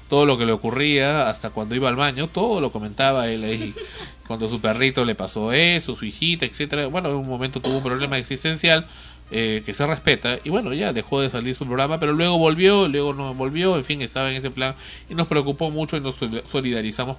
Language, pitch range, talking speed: Spanish, 110-140 Hz, 220 wpm